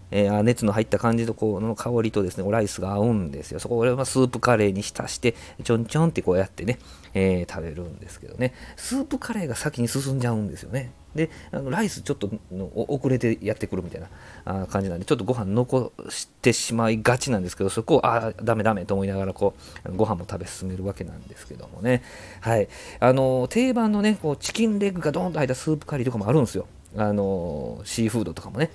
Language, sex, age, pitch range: Japanese, male, 40-59, 100-150 Hz